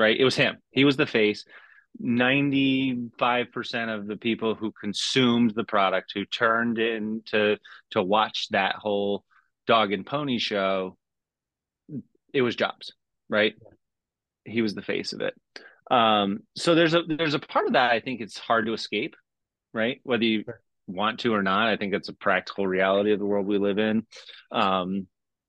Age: 30-49